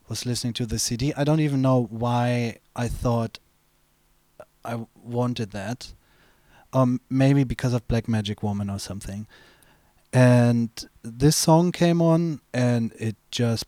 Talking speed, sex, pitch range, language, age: 140 wpm, male, 110-125 Hz, English, 30-49